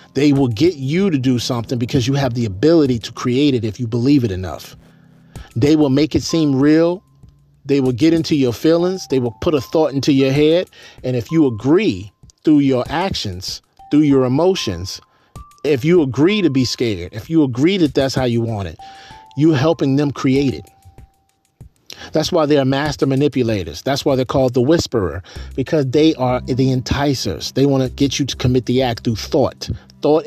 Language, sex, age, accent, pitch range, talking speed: English, male, 40-59, American, 115-150 Hz, 200 wpm